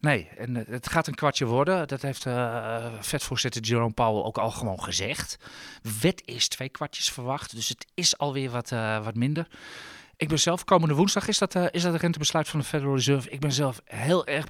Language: Dutch